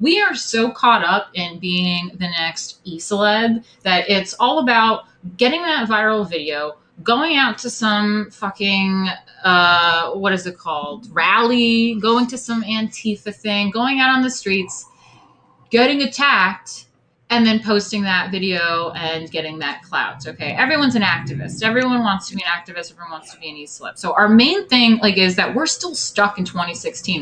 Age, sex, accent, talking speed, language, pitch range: 30-49, female, American, 170 wpm, English, 175-235 Hz